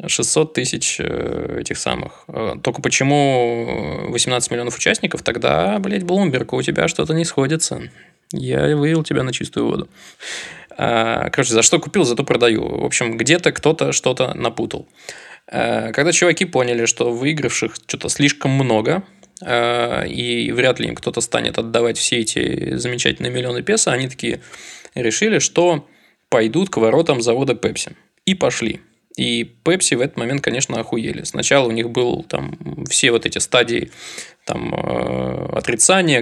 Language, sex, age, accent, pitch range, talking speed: Russian, male, 20-39, native, 120-165 Hz, 140 wpm